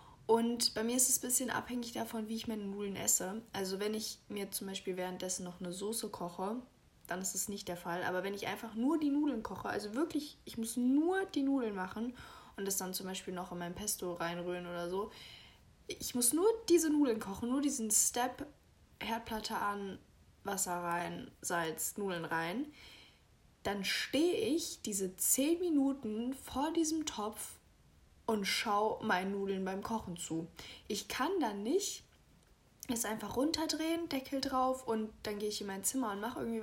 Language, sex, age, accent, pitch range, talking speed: German, female, 20-39, German, 190-265 Hz, 180 wpm